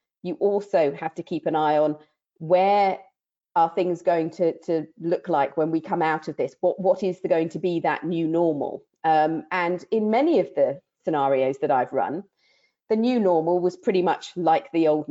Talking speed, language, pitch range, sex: 200 wpm, English, 160-200 Hz, female